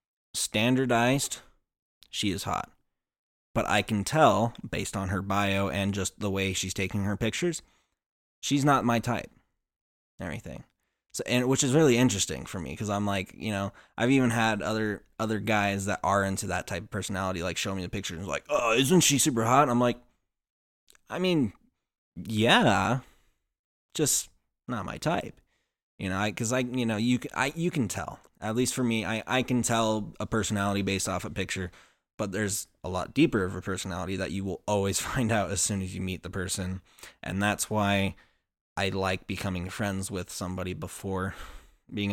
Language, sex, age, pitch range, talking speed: English, male, 20-39, 95-115 Hz, 185 wpm